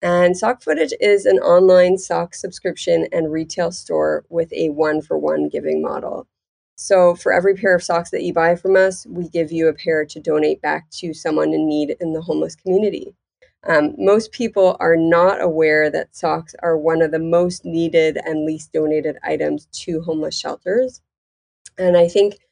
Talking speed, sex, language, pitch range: 180 wpm, female, English, 155-190 Hz